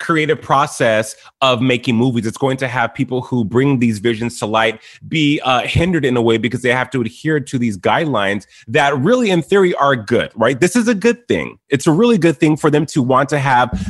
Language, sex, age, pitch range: English, male, 20-39, 115-145 Hz